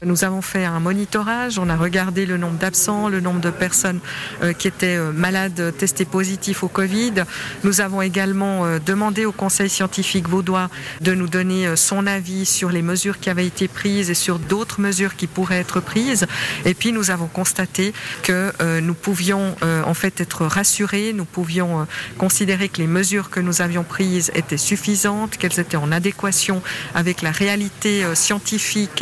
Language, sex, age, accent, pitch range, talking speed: French, female, 50-69, French, 175-200 Hz, 170 wpm